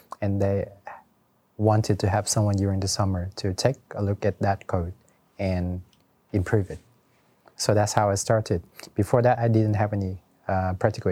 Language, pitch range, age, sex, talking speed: English, 95-110 Hz, 30-49, male, 175 wpm